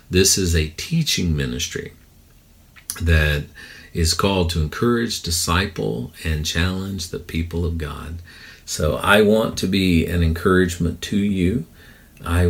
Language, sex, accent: English, male, American